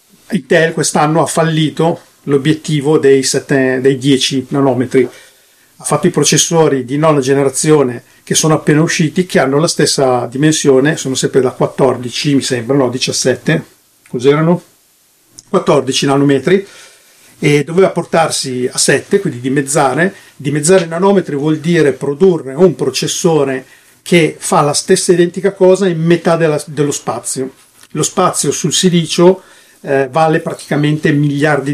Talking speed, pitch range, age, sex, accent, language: 130 wpm, 135-170 Hz, 50-69, male, native, Italian